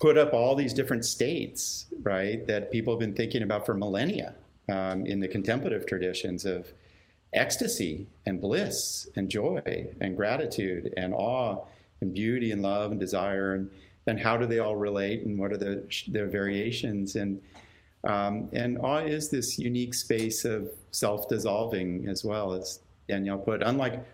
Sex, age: male, 50-69